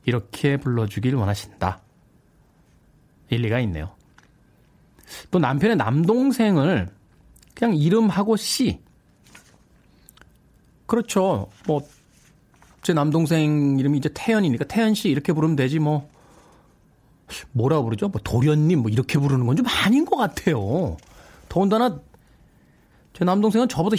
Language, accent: Korean, native